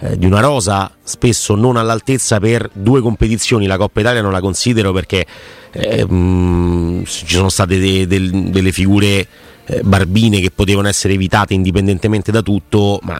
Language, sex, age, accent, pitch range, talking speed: Italian, male, 30-49, native, 95-120 Hz, 160 wpm